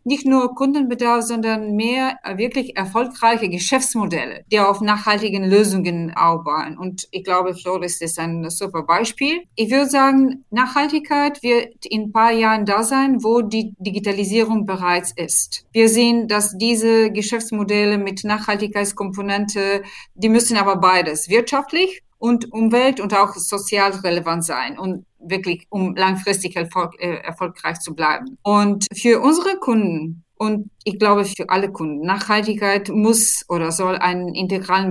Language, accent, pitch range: German, German, 185-230 Hz